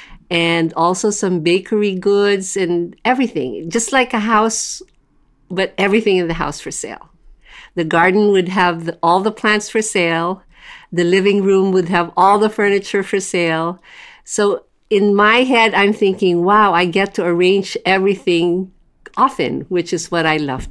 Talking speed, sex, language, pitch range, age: 160 wpm, female, English, 175-210 Hz, 50-69